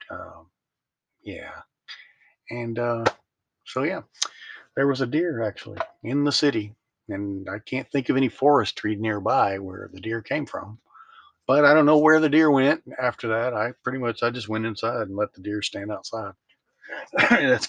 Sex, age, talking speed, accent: male, 40-59, 180 wpm, American